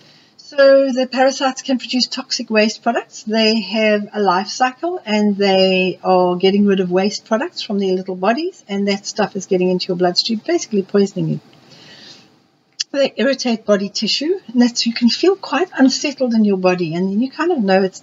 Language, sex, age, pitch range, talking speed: English, female, 60-79, 190-245 Hz, 190 wpm